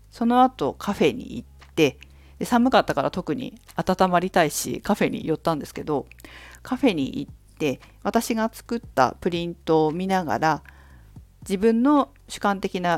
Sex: female